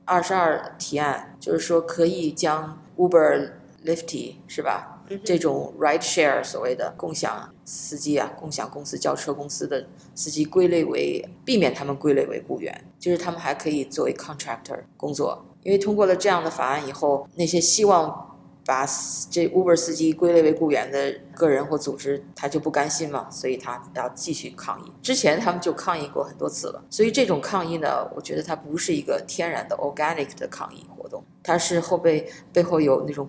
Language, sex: Chinese, female